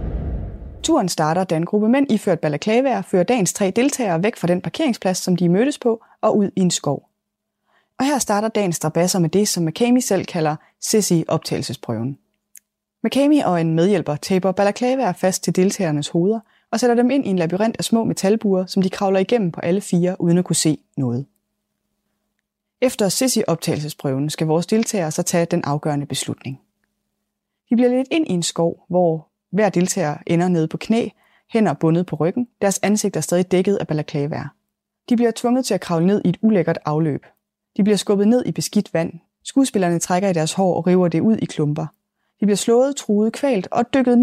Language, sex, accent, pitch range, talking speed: Danish, female, native, 165-220 Hz, 195 wpm